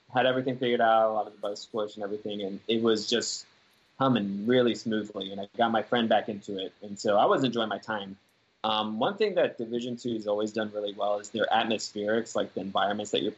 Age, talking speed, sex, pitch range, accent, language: 20-39, 240 wpm, male, 100-115 Hz, American, English